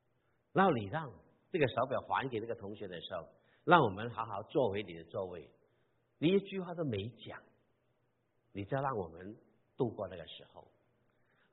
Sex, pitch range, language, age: male, 105-135 Hz, Chinese, 50-69